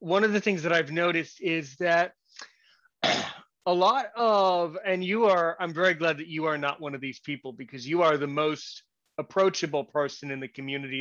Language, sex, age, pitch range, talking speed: English, male, 30-49, 150-195 Hz, 195 wpm